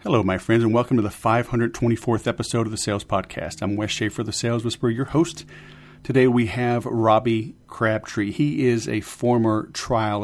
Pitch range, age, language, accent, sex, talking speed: 105-120 Hz, 40-59, English, American, male, 180 wpm